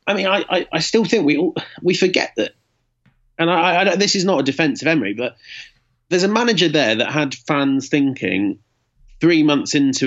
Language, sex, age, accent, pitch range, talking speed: English, male, 30-49, British, 120-155 Hz, 210 wpm